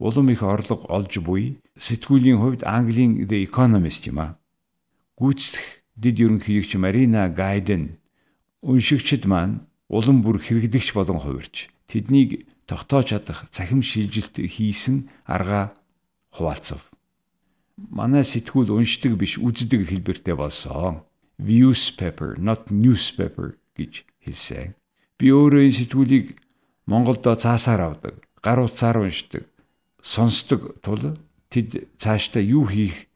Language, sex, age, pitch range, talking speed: Russian, male, 60-79, 95-130 Hz, 60 wpm